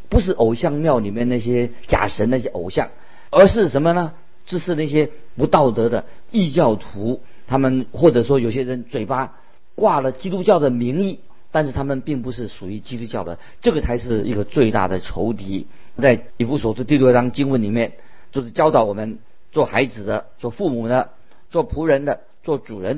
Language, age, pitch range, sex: Chinese, 50-69, 115-145 Hz, male